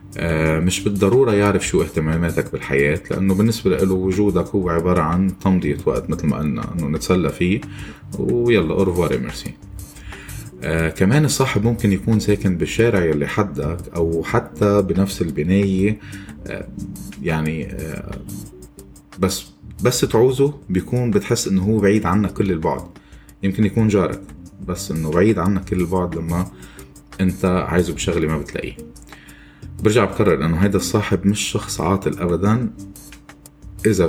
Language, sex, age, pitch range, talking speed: Arabic, male, 20-39, 80-100 Hz, 135 wpm